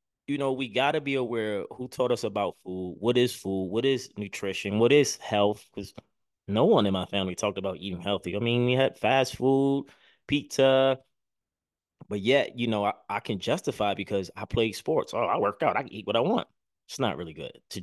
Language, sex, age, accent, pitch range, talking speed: English, male, 20-39, American, 95-125 Hz, 220 wpm